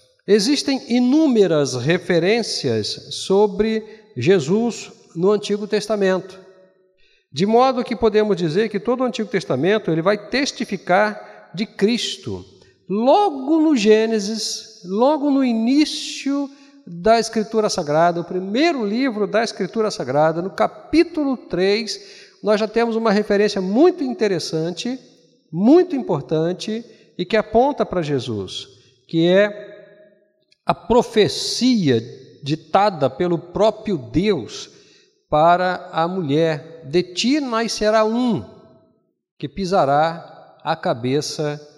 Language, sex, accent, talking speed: Portuguese, male, Brazilian, 110 wpm